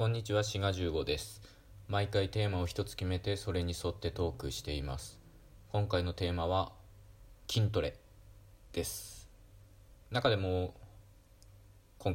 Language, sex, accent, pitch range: Japanese, male, native, 95-110 Hz